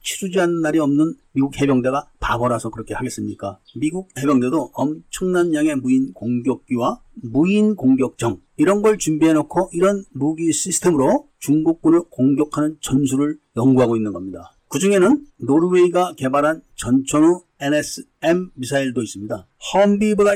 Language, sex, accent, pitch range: Korean, male, native, 130-180 Hz